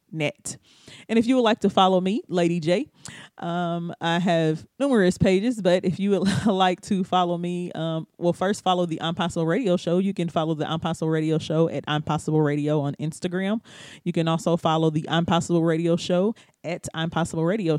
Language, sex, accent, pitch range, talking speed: English, male, American, 160-190 Hz, 195 wpm